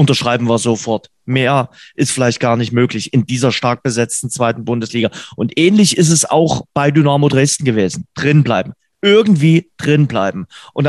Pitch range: 130-170 Hz